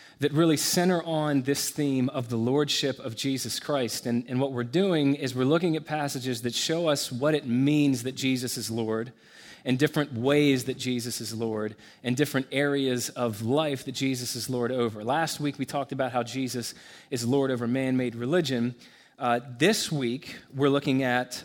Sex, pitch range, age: male, 120-145 Hz, 30-49